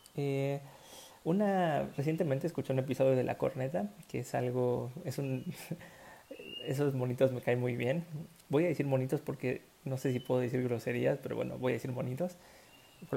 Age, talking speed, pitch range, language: 30-49, 175 wpm, 130-160 Hz, Spanish